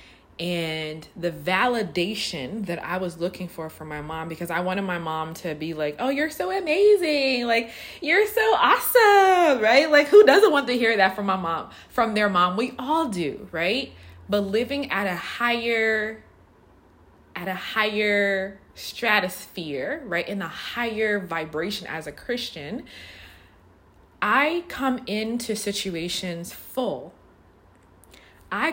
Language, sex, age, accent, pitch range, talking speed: English, female, 20-39, American, 155-235 Hz, 140 wpm